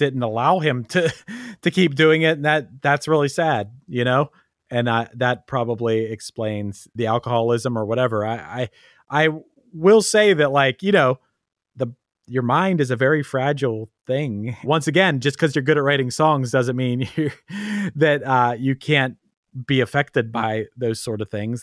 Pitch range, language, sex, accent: 120-165 Hz, English, male, American